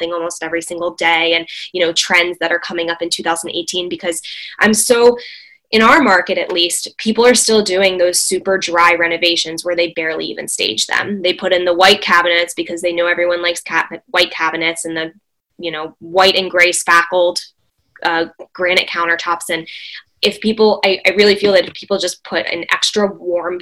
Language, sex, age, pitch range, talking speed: English, female, 10-29, 175-200 Hz, 195 wpm